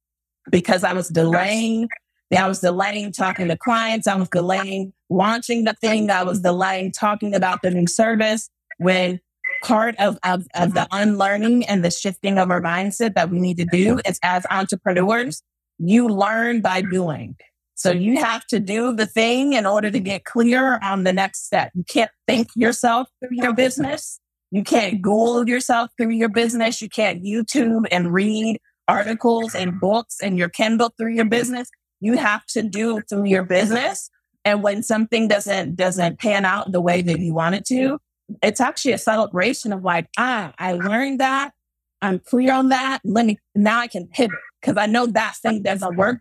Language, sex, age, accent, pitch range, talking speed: English, female, 30-49, American, 180-230 Hz, 185 wpm